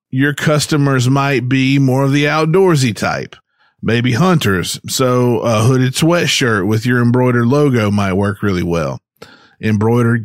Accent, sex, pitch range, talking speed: American, male, 110-145 Hz, 140 wpm